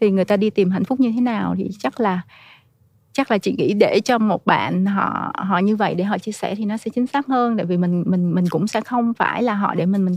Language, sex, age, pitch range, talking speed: Vietnamese, female, 20-39, 140-215 Hz, 290 wpm